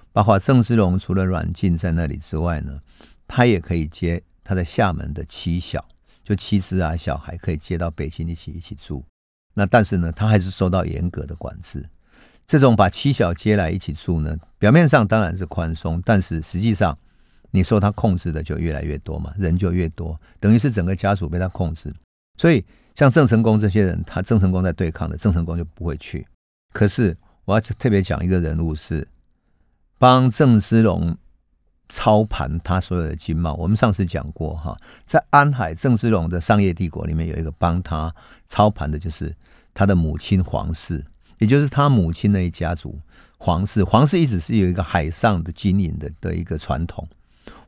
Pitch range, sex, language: 80-105 Hz, male, Chinese